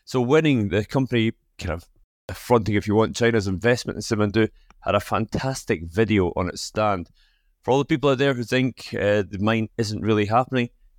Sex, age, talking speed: male, 30-49, 190 wpm